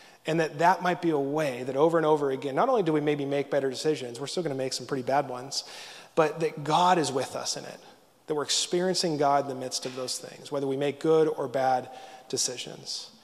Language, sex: English, male